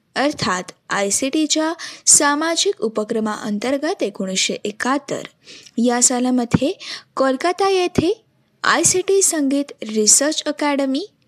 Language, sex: Marathi, female